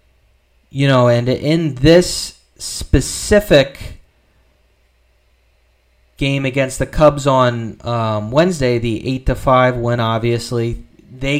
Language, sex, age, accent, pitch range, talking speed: English, male, 30-49, American, 105-150 Hz, 100 wpm